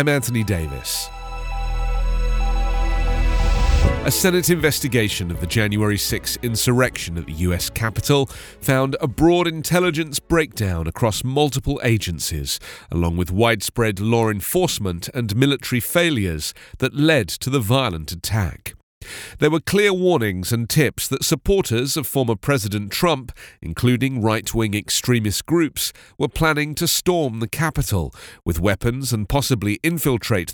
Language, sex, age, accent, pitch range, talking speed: English, male, 40-59, British, 105-150 Hz, 125 wpm